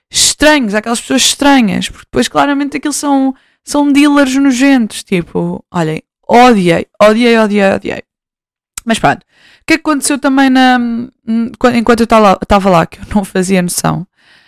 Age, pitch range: 20-39, 175-235 Hz